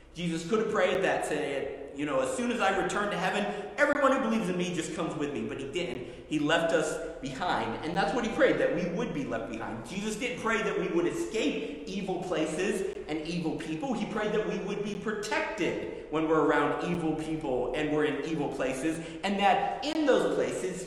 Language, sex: English, male